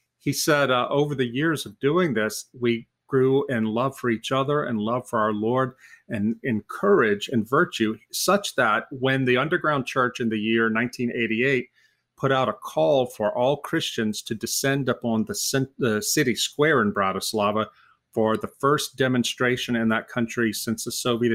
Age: 40-59